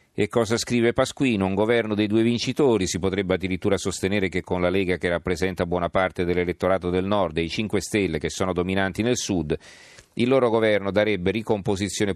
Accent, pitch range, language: native, 85-100 Hz, Italian